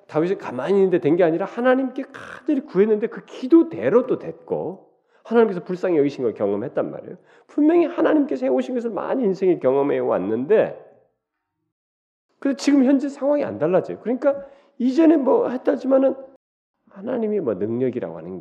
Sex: male